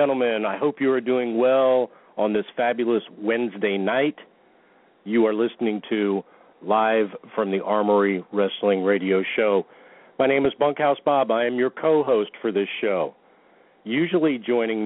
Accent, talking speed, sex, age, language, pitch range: American, 155 wpm, male, 50-69, English, 105-125 Hz